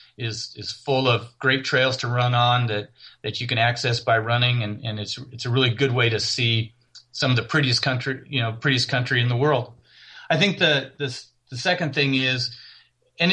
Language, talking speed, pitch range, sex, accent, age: English, 210 wpm, 115-135 Hz, male, American, 40-59